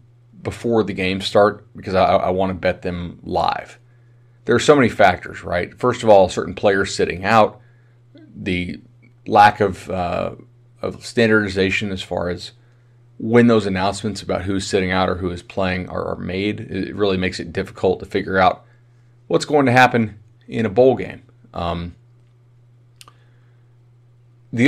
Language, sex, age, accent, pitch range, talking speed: English, male, 30-49, American, 95-120 Hz, 160 wpm